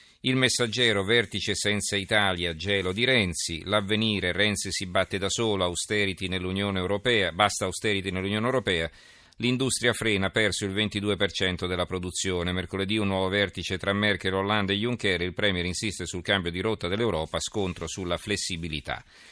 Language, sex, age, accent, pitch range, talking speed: Italian, male, 40-59, native, 95-105 Hz, 140 wpm